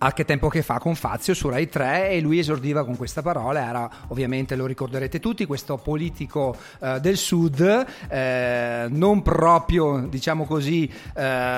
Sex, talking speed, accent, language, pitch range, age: male, 165 wpm, native, Italian, 140-195 Hz, 40-59